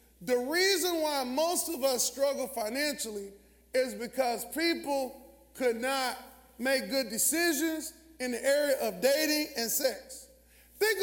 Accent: American